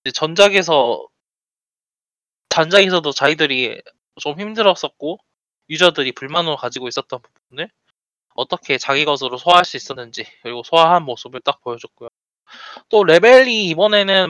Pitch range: 140-205 Hz